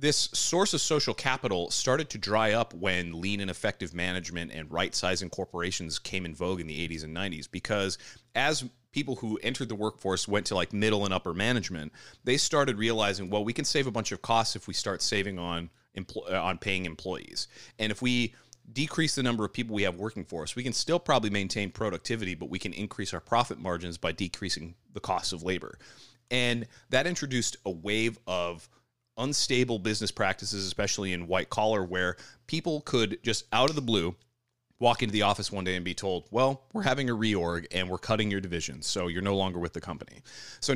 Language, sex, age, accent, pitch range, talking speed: English, male, 30-49, American, 90-120 Hz, 205 wpm